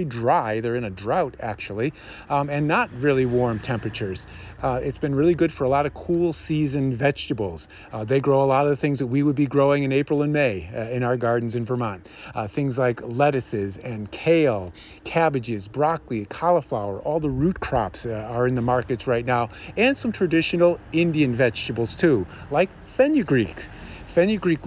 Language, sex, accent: English, male, American